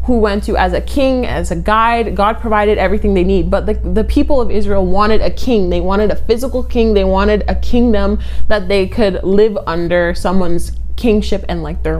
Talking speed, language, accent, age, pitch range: 210 wpm, English, American, 20-39, 190-245 Hz